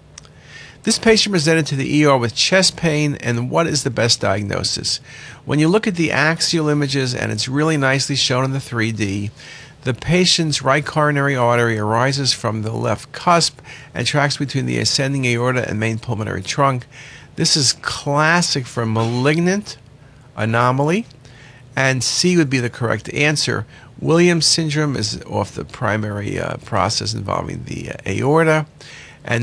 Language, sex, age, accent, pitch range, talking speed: English, male, 50-69, American, 115-145 Hz, 155 wpm